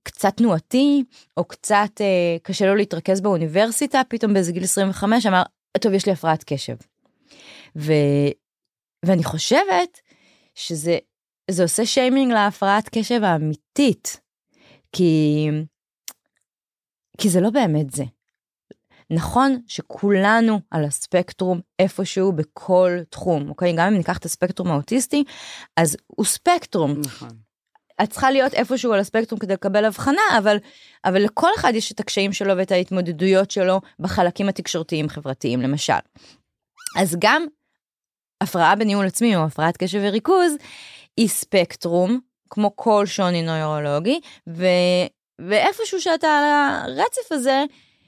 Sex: female